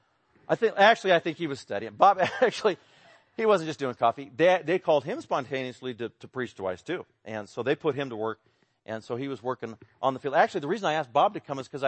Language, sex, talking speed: English, male, 255 wpm